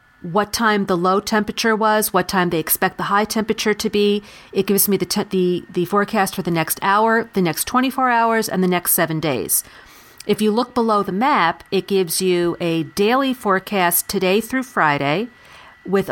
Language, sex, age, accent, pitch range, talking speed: English, female, 40-59, American, 175-215 Hz, 195 wpm